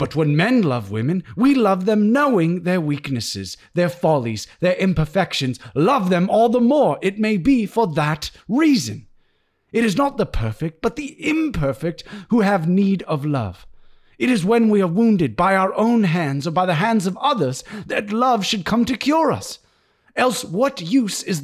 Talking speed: 185 wpm